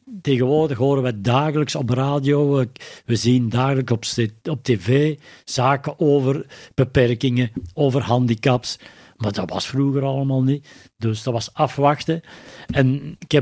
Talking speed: 135 wpm